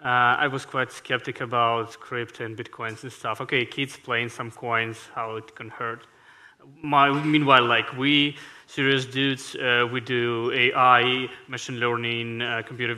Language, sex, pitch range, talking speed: English, male, 125-145 Hz, 155 wpm